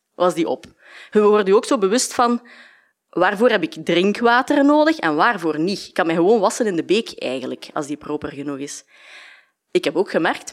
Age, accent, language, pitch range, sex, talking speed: 20-39, Belgian, Dutch, 180-250 Hz, female, 200 wpm